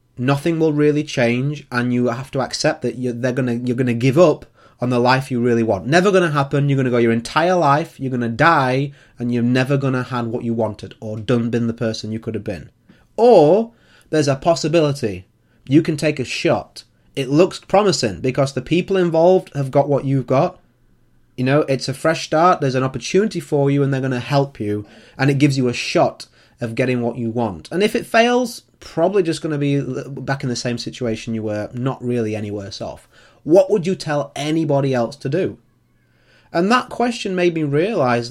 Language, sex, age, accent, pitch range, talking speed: English, male, 30-49, British, 120-155 Hz, 215 wpm